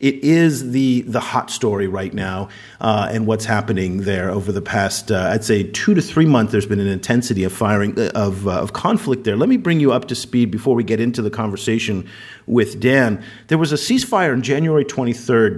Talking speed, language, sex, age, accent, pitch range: 220 wpm, English, male, 40-59, American, 100-135 Hz